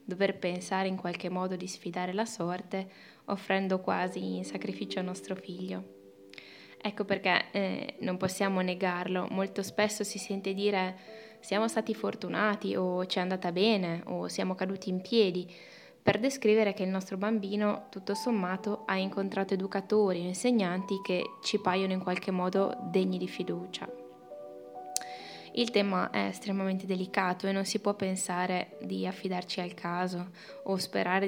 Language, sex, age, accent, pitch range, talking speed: Italian, female, 20-39, native, 185-210 Hz, 150 wpm